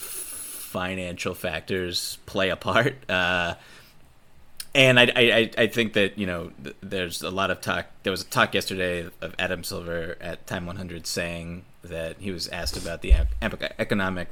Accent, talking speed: American, 160 wpm